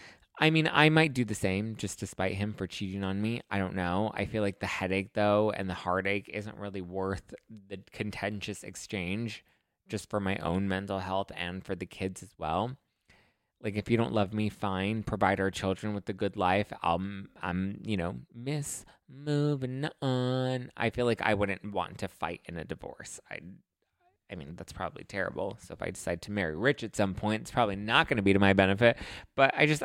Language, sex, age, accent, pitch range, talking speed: English, male, 20-39, American, 95-115 Hz, 215 wpm